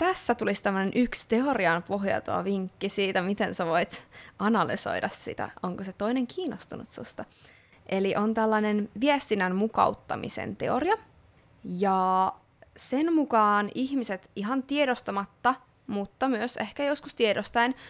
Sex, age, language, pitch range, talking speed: female, 20-39, Finnish, 200-240 Hz, 115 wpm